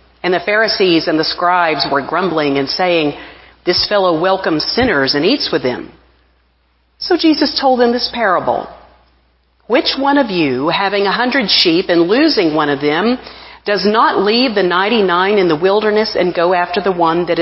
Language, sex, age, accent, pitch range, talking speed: English, female, 50-69, American, 165-225 Hz, 175 wpm